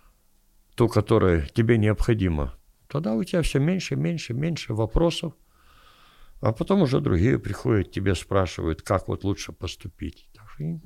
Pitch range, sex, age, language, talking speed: 90-125 Hz, male, 60-79, Russian, 125 wpm